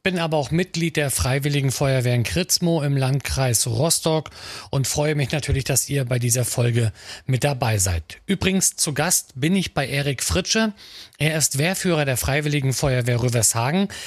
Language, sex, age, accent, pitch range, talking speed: German, male, 40-59, German, 130-170 Hz, 165 wpm